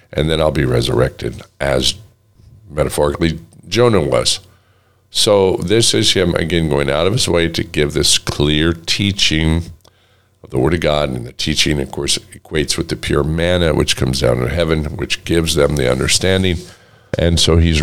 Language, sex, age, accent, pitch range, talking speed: English, male, 50-69, American, 75-95 Hz, 175 wpm